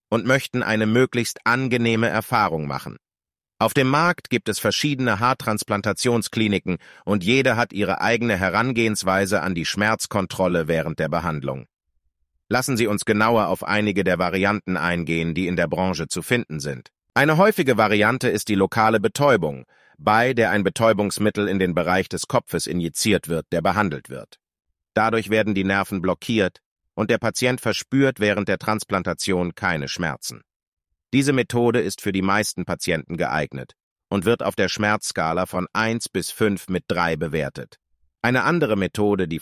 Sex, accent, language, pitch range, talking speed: male, German, German, 90-115 Hz, 155 wpm